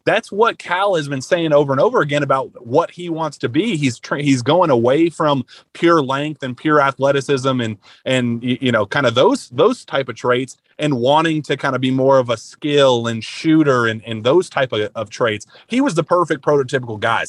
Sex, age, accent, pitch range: male, 30-49, American, 120-145 Hz